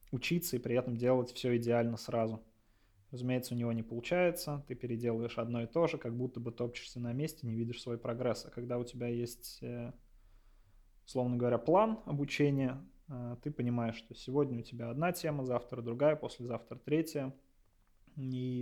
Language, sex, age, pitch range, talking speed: Russian, male, 20-39, 115-125 Hz, 165 wpm